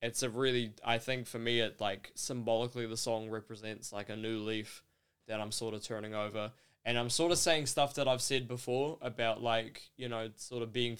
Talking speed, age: 220 wpm, 20-39